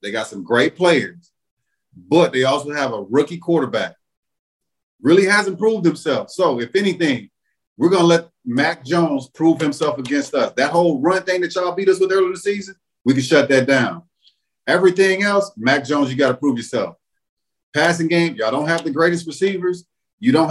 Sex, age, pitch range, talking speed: male, 40-59, 130-170 Hz, 190 wpm